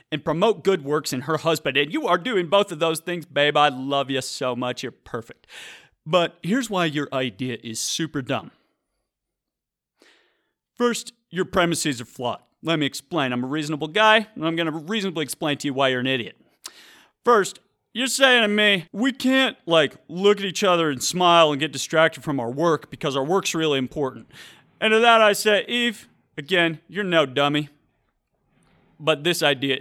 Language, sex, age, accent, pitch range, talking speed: English, male, 30-49, American, 145-235 Hz, 185 wpm